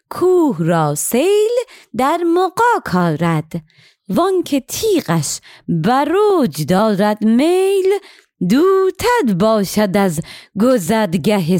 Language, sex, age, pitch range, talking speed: Persian, female, 30-49, 175-275 Hz, 85 wpm